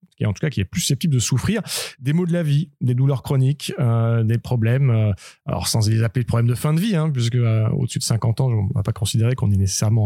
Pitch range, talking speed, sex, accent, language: 115-145 Hz, 280 wpm, male, French, French